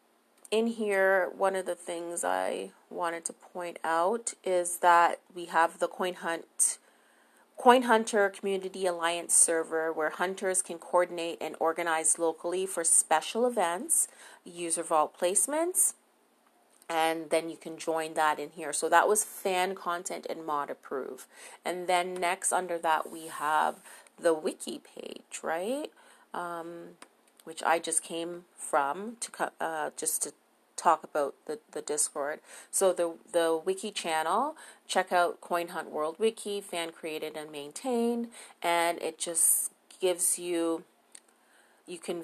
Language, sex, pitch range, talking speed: English, female, 165-195 Hz, 140 wpm